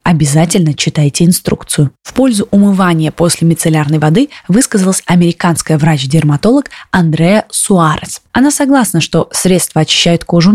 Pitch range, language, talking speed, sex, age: 155-200 Hz, Russian, 115 wpm, female, 20-39